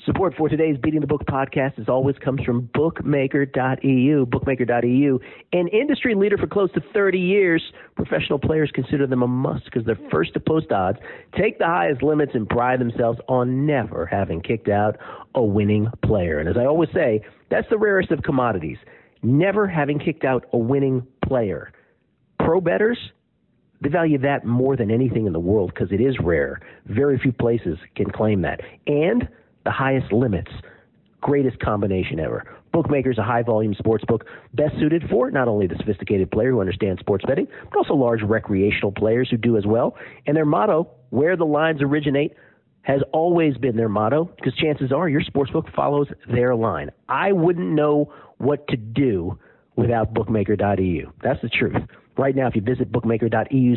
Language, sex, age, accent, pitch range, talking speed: English, male, 50-69, American, 115-150 Hz, 175 wpm